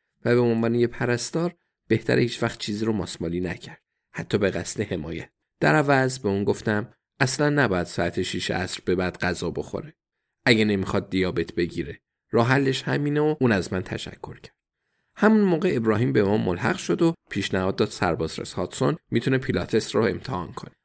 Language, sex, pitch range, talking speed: Persian, male, 95-130 Hz, 175 wpm